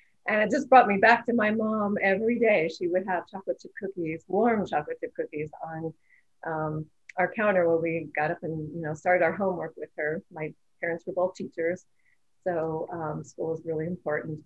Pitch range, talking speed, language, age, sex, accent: 165-195 Hz, 200 wpm, English, 30-49, female, American